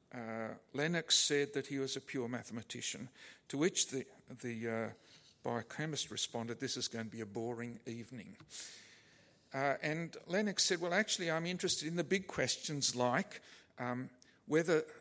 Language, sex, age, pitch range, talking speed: English, male, 50-69, 120-155 Hz, 155 wpm